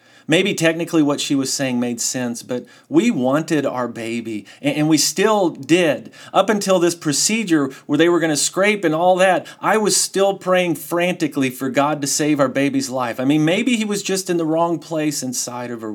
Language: English